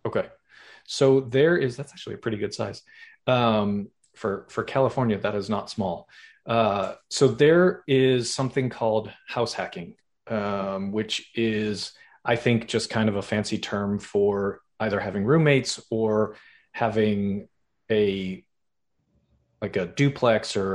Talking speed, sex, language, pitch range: 140 wpm, male, English, 100-125 Hz